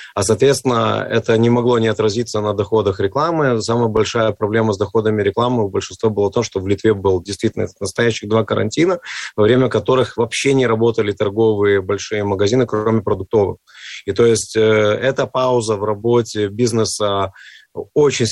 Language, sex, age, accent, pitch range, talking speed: Russian, male, 30-49, native, 105-125 Hz, 160 wpm